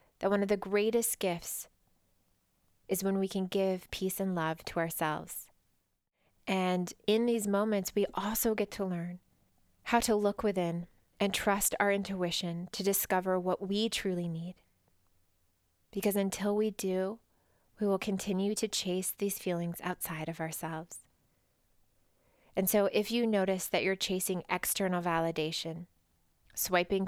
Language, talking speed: English, 140 wpm